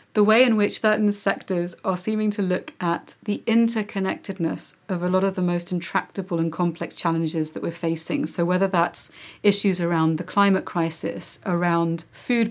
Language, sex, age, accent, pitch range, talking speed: English, female, 30-49, British, 175-210 Hz, 175 wpm